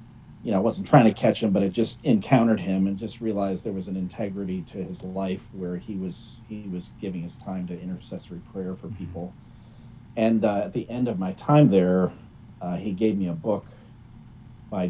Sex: male